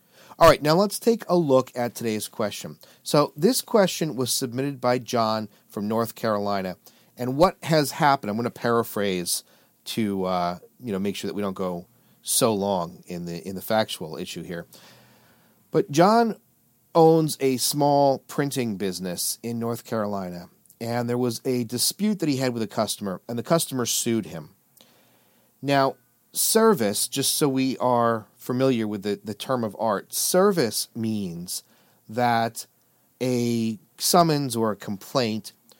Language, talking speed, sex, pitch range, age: English, 160 wpm, male, 110-145 Hz, 40-59